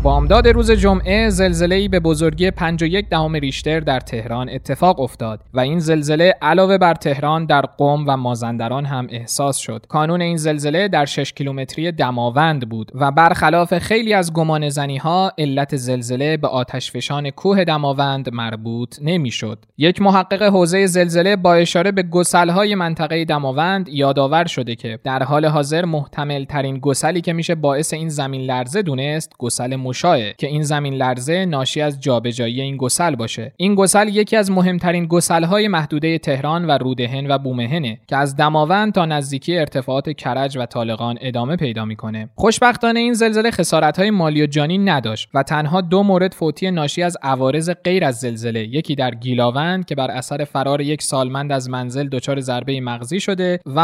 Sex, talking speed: male, 160 wpm